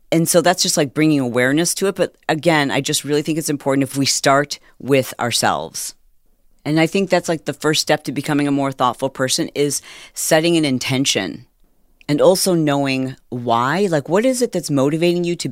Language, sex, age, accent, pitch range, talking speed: English, female, 40-59, American, 135-165 Hz, 200 wpm